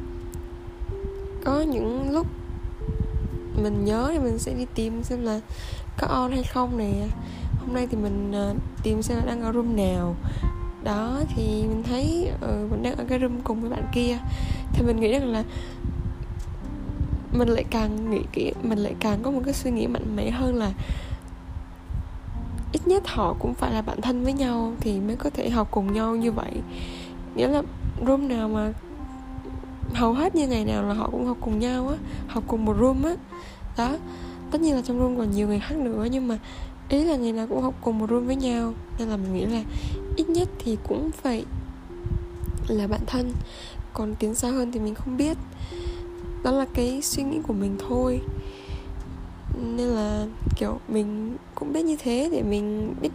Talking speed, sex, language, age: 190 wpm, female, Vietnamese, 10-29